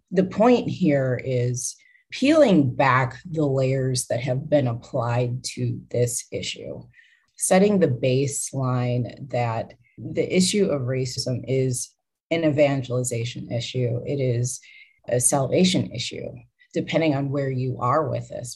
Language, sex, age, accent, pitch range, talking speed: English, female, 30-49, American, 125-155 Hz, 125 wpm